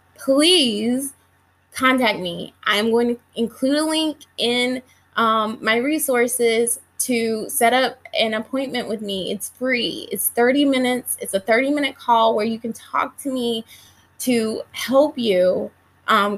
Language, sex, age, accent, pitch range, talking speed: English, female, 20-39, American, 215-255 Hz, 145 wpm